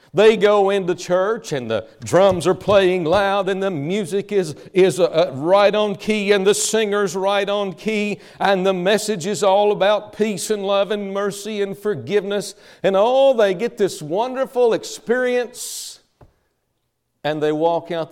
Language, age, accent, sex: English, 50-69, American, male